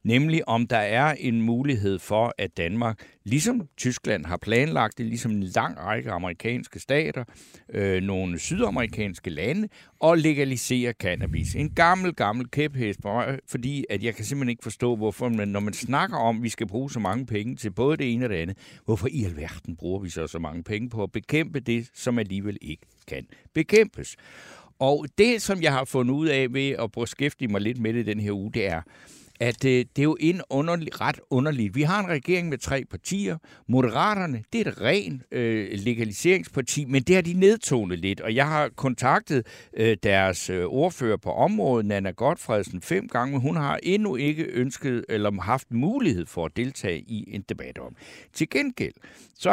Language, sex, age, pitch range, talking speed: Danish, male, 60-79, 105-145 Hz, 195 wpm